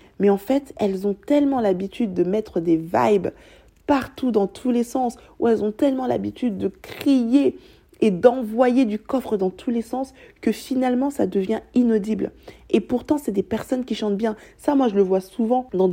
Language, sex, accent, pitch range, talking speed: French, female, French, 195-245 Hz, 190 wpm